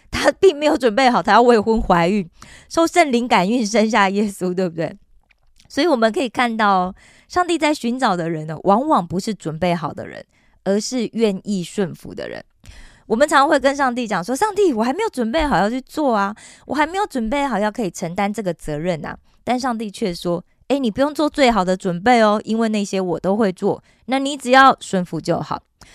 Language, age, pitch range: Korean, 20-39, 185-255 Hz